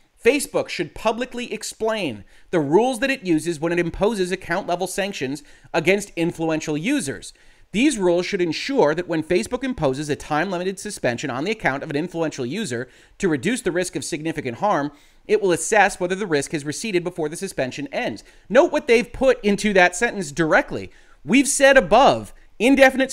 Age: 30-49